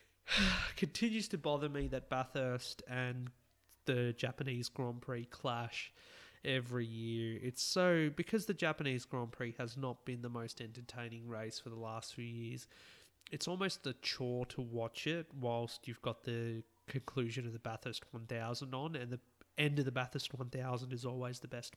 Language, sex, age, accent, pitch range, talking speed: English, male, 20-39, Australian, 120-135 Hz, 170 wpm